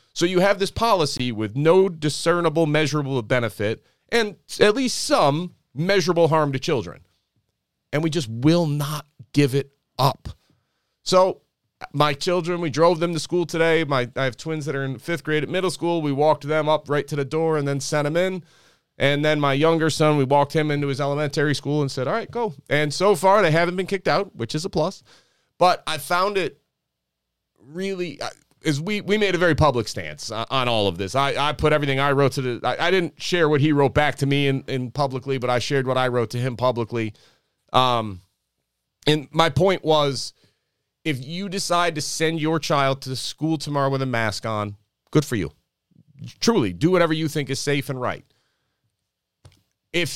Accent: American